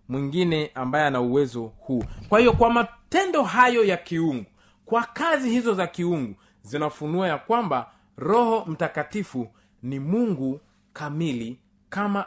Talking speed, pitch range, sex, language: 125 wpm, 135-220 Hz, male, Swahili